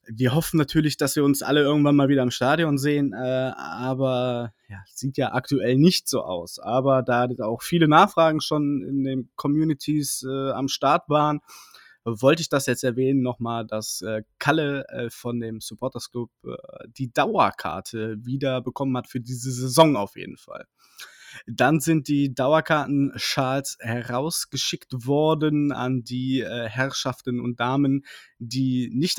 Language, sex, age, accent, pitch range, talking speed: German, male, 20-39, German, 120-140 Hz, 155 wpm